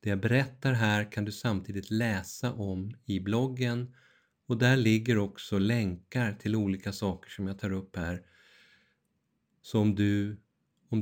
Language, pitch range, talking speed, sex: Swedish, 100-115 Hz, 145 wpm, male